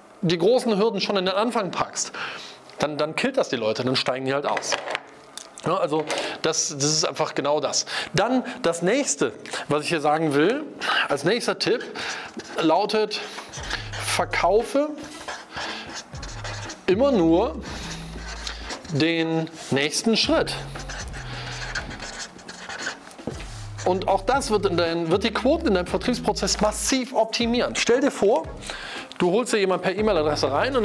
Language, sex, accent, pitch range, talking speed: German, male, German, 165-230 Hz, 135 wpm